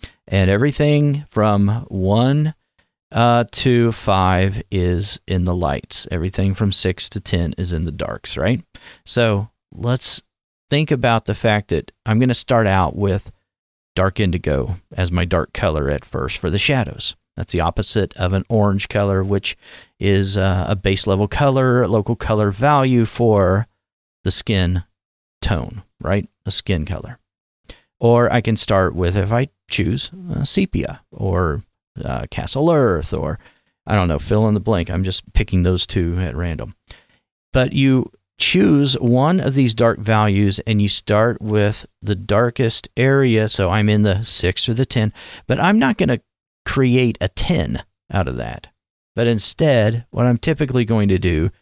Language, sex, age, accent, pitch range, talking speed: English, male, 40-59, American, 95-115 Hz, 165 wpm